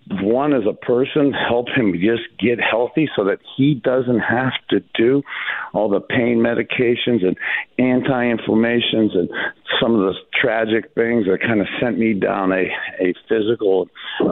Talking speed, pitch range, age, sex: 160 wpm, 115-145 Hz, 50-69, male